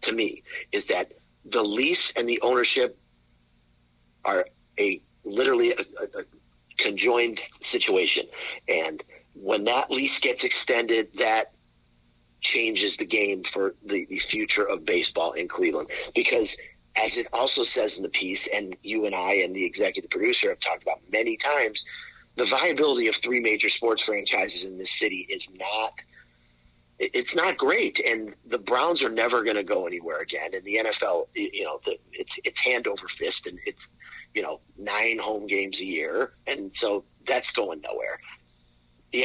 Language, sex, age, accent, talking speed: English, male, 40-59, American, 160 wpm